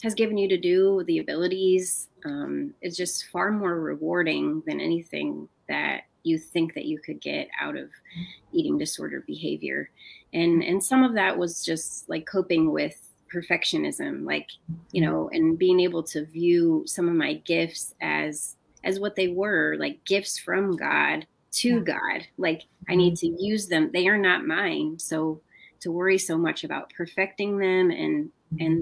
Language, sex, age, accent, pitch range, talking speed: English, female, 30-49, American, 160-200 Hz, 170 wpm